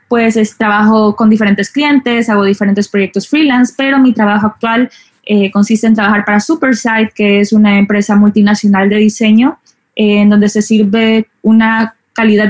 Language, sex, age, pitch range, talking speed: Spanish, female, 20-39, 210-240 Hz, 165 wpm